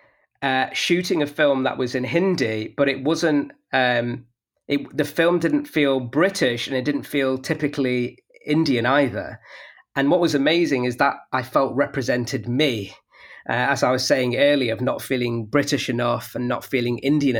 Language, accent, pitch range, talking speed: English, British, 120-145 Hz, 170 wpm